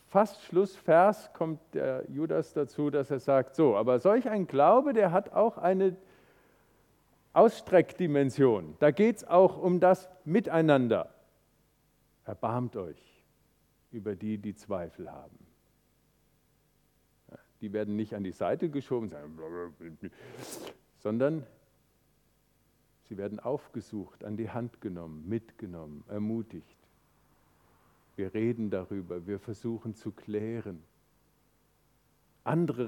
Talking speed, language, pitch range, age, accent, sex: 105 wpm, German, 105-155 Hz, 50-69, German, male